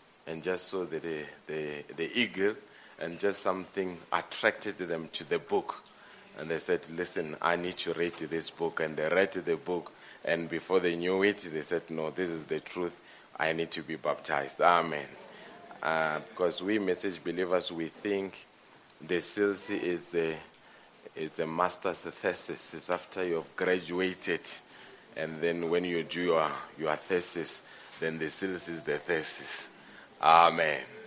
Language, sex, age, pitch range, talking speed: English, male, 30-49, 85-100 Hz, 160 wpm